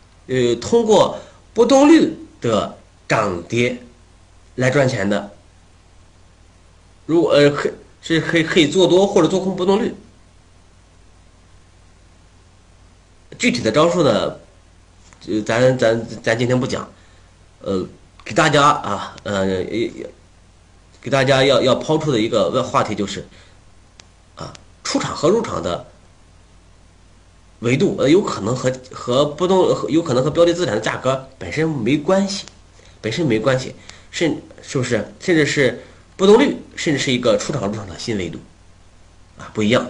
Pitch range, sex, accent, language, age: 90-125 Hz, male, native, Chinese, 30-49